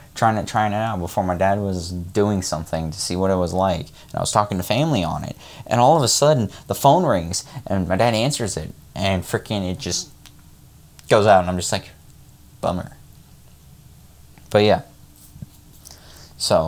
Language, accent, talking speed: English, American, 185 wpm